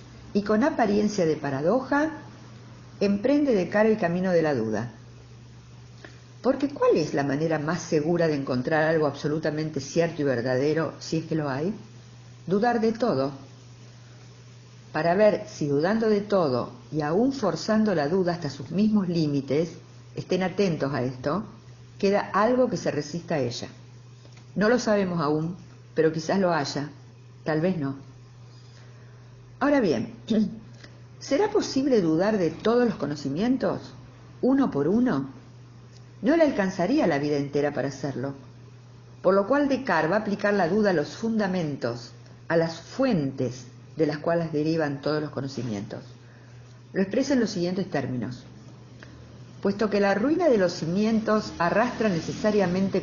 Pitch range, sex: 125-200 Hz, female